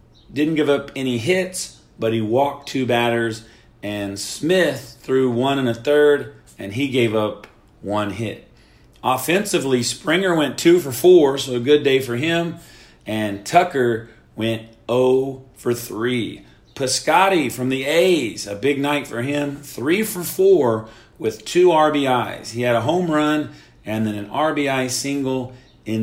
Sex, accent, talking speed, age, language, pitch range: male, American, 155 wpm, 40-59, English, 115-150 Hz